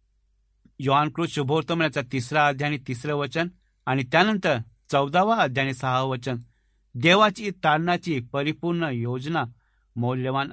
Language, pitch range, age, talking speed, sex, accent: Marathi, 125-175 Hz, 60-79, 105 wpm, male, native